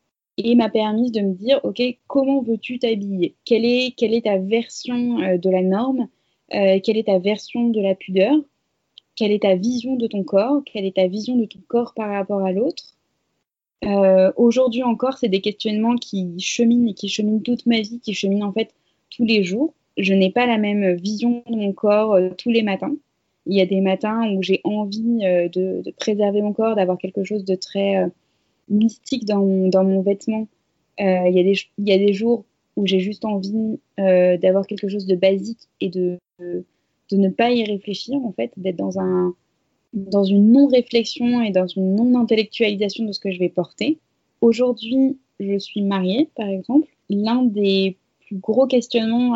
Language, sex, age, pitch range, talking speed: French, female, 20-39, 195-235 Hz, 195 wpm